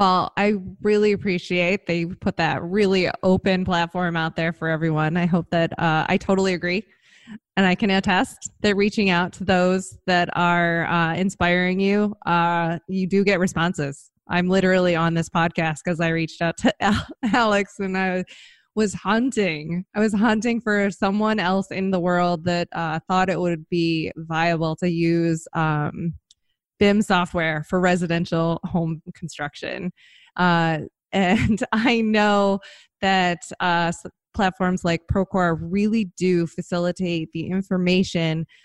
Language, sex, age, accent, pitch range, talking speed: English, female, 20-39, American, 165-190 Hz, 150 wpm